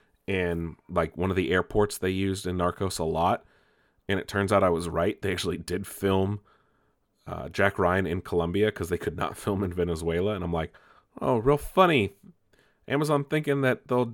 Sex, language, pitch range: male, English, 90-125 Hz